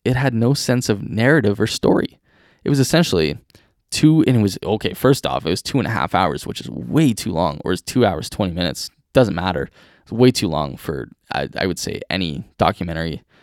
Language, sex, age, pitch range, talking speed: English, male, 10-29, 100-115 Hz, 220 wpm